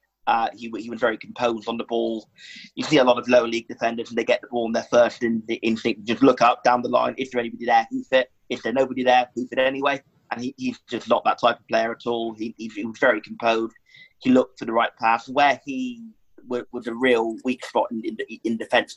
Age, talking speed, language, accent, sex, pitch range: 30-49, 260 wpm, English, British, male, 110-125 Hz